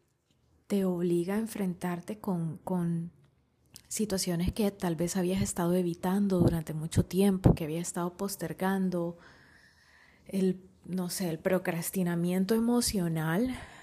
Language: Spanish